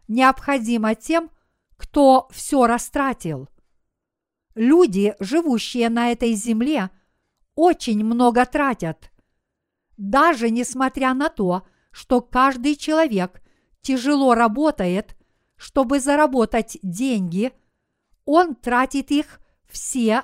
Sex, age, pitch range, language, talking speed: female, 50-69, 225-285 Hz, Russian, 85 wpm